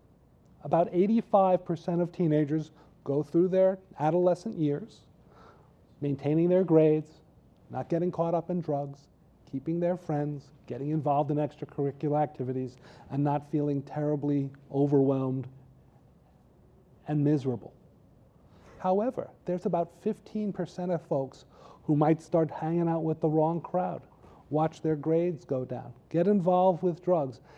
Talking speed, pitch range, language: 125 wpm, 145-175 Hz, English